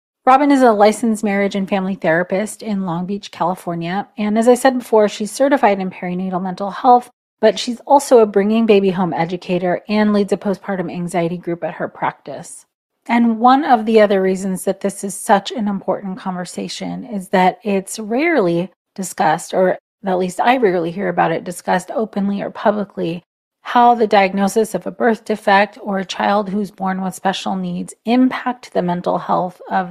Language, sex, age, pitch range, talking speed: English, female, 30-49, 185-220 Hz, 180 wpm